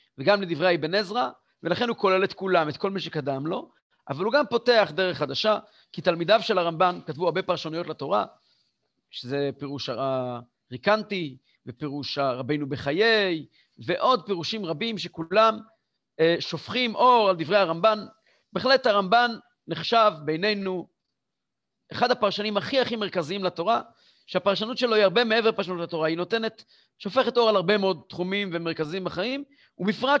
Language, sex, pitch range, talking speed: Hebrew, male, 165-225 Hz, 140 wpm